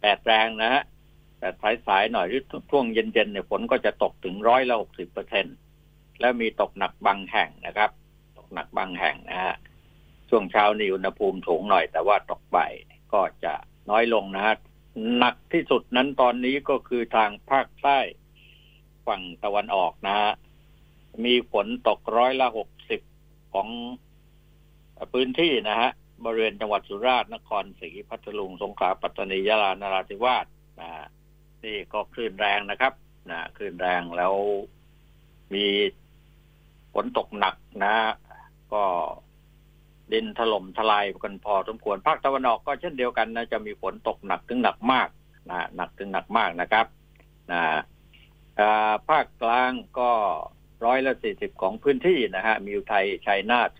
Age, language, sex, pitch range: 60-79, Thai, male, 100-135 Hz